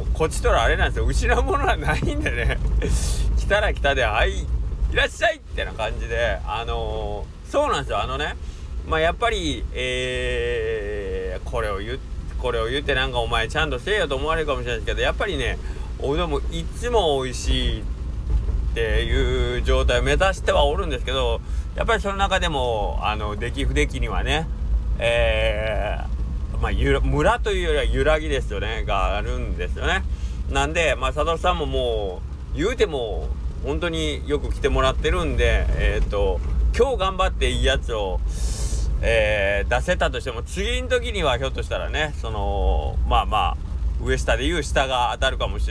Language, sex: Japanese, male